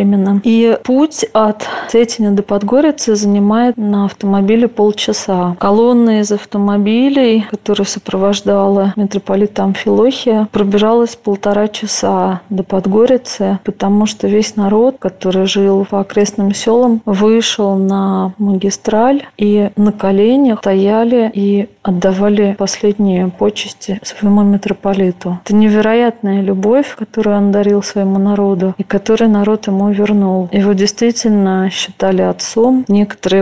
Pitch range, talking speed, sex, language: 195-215 Hz, 115 wpm, female, Russian